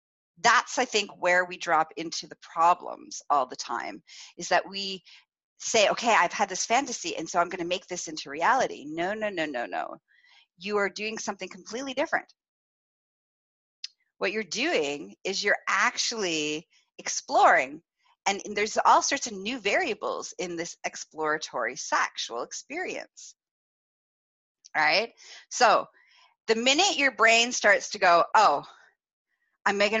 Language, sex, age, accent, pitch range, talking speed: English, female, 30-49, American, 175-255 Hz, 150 wpm